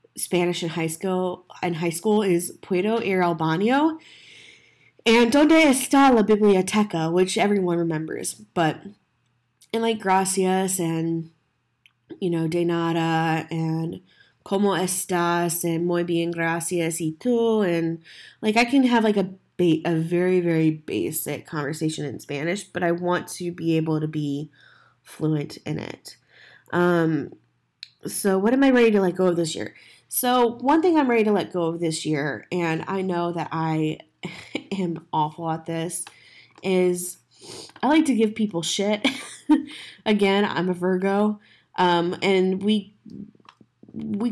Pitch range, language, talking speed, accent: 165-210 Hz, English, 150 wpm, American